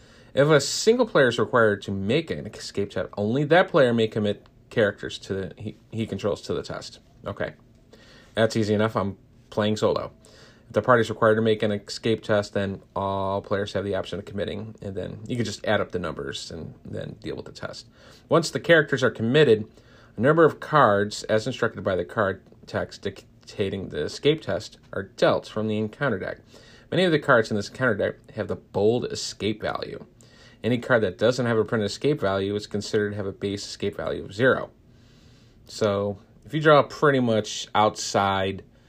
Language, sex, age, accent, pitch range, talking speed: English, male, 40-59, American, 105-125 Hz, 200 wpm